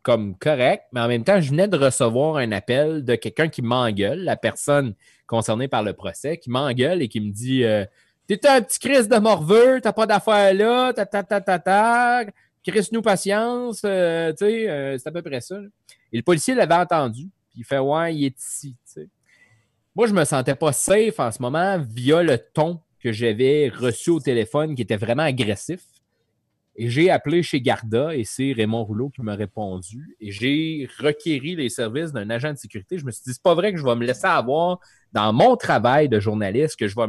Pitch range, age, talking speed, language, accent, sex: 115-170 Hz, 30-49, 210 wpm, French, Canadian, male